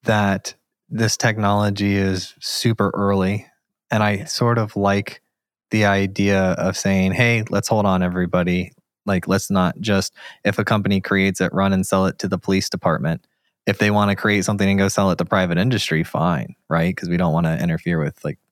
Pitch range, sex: 95-105 Hz, male